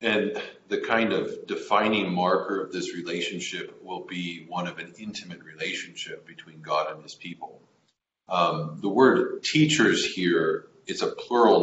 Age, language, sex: 40-59, English, male